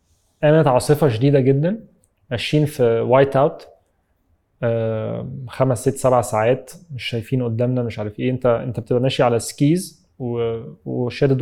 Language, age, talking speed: English, 20-39, 120 wpm